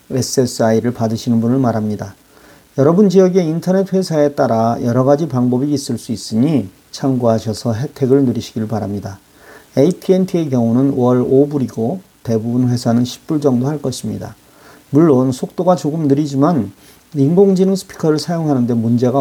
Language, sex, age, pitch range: Korean, male, 40-59, 125-160 Hz